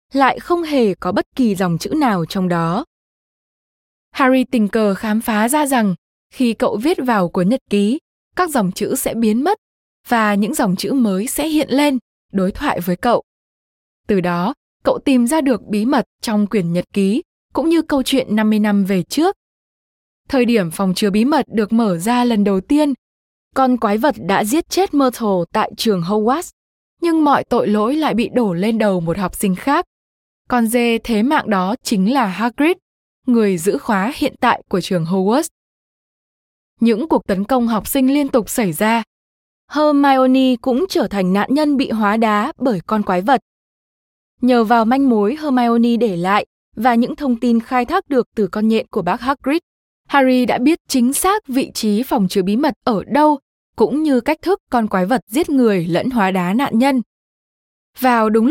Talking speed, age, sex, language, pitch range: 190 wpm, 10-29, female, Vietnamese, 205-275 Hz